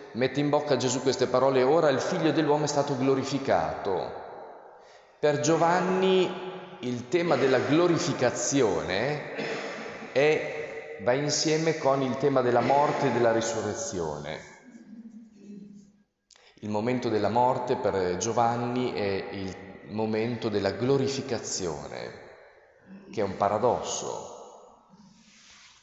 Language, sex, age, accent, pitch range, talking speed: Italian, male, 30-49, native, 105-140 Hz, 105 wpm